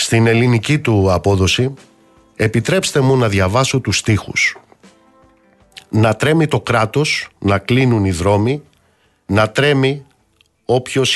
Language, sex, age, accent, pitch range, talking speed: Greek, male, 50-69, native, 100-130 Hz, 115 wpm